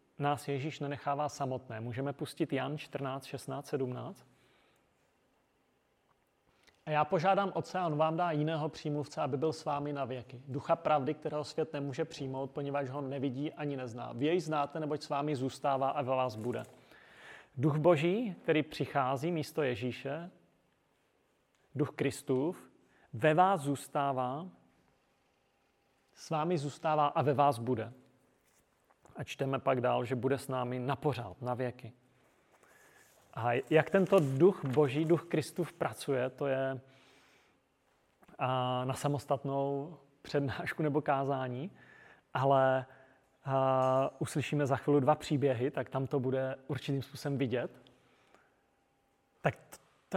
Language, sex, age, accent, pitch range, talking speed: Czech, male, 30-49, native, 130-155 Hz, 125 wpm